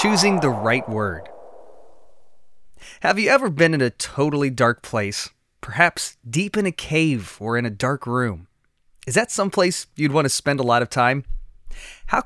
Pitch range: 120-165 Hz